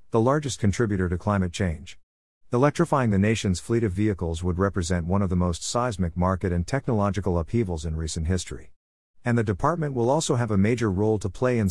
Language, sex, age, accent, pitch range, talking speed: English, male, 50-69, American, 85-110 Hz, 195 wpm